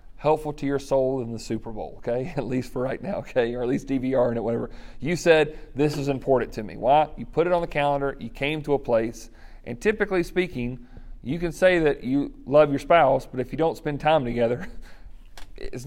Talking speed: 225 wpm